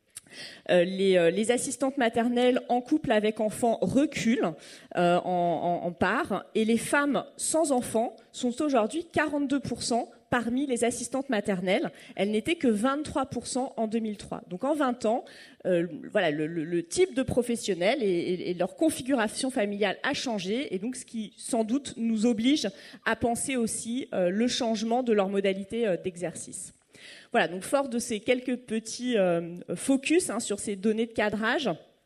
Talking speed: 160 wpm